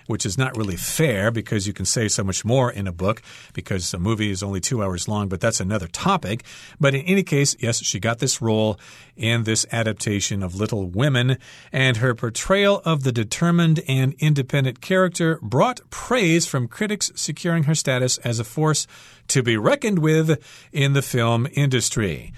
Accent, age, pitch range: American, 40-59, 110-150 Hz